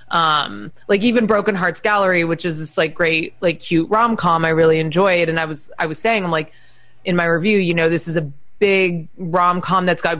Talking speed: 220 wpm